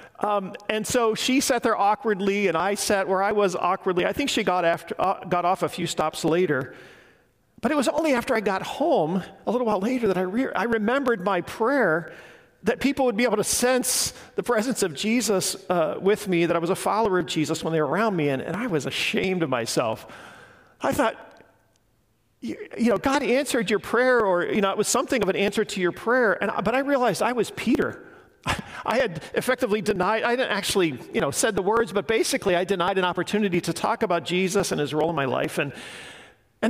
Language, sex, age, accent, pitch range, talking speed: English, male, 40-59, American, 175-230 Hz, 225 wpm